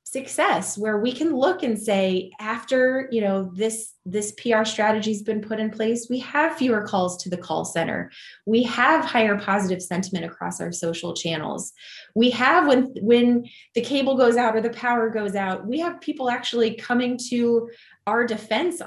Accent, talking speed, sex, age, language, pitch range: American, 180 wpm, female, 20-39, English, 185-235 Hz